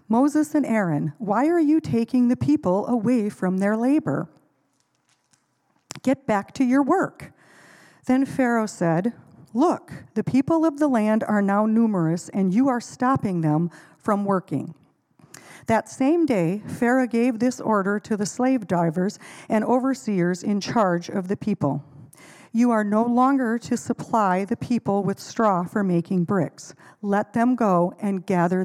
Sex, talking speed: female, 155 wpm